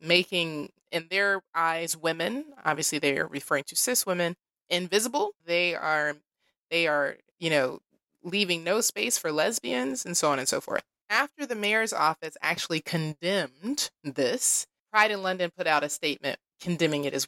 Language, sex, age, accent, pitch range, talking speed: English, female, 20-39, American, 155-195 Hz, 165 wpm